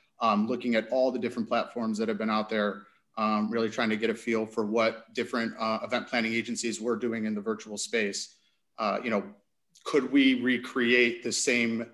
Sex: male